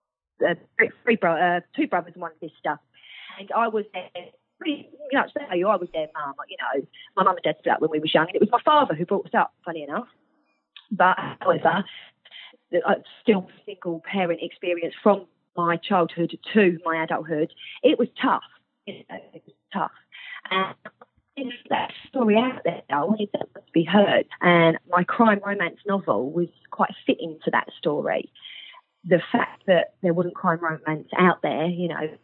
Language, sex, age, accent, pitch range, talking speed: English, female, 30-49, British, 170-240 Hz, 180 wpm